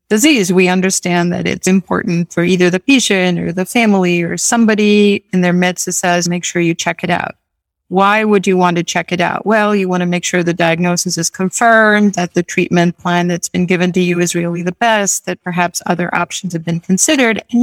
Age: 50-69